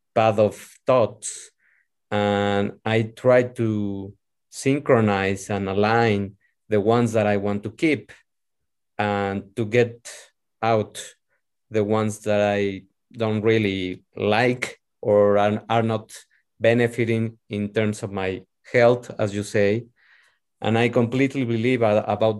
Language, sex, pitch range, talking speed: English, male, 105-120 Hz, 120 wpm